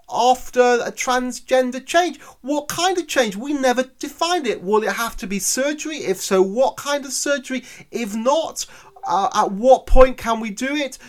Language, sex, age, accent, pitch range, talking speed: English, male, 30-49, British, 180-260 Hz, 185 wpm